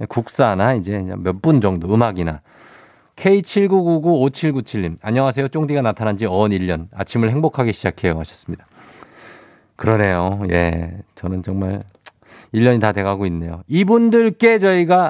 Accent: native